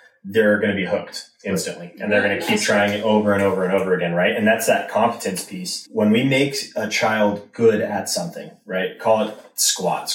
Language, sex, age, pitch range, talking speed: English, male, 20-39, 95-130 Hz, 220 wpm